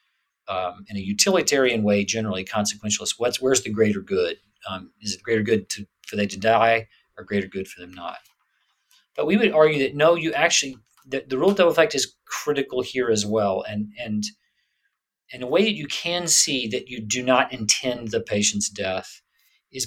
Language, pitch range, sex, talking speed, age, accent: English, 105-125 Hz, male, 195 wpm, 40-59, American